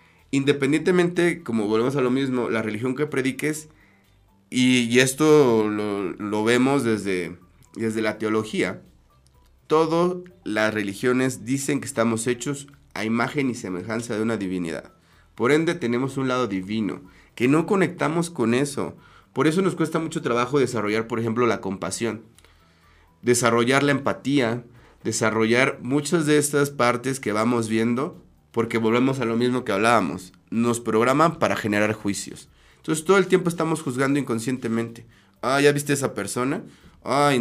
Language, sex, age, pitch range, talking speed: Spanish, male, 30-49, 105-140 Hz, 150 wpm